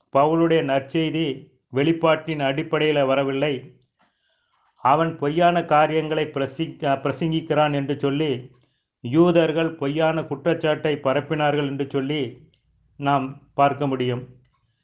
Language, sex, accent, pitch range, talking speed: Tamil, male, native, 135-160 Hz, 85 wpm